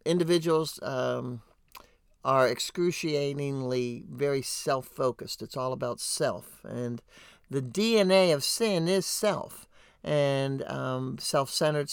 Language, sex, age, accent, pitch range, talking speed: English, male, 60-79, American, 130-165 Hz, 100 wpm